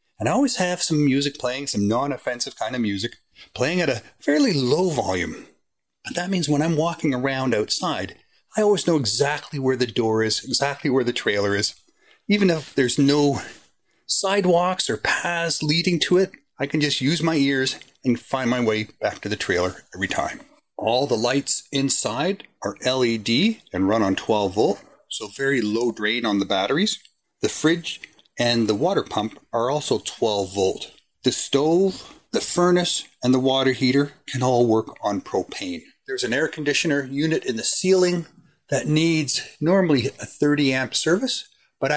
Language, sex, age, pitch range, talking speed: English, male, 30-49, 115-160 Hz, 175 wpm